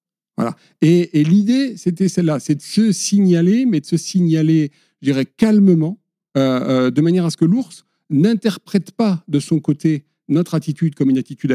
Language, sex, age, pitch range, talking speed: French, male, 50-69, 145-200 Hz, 180 wpm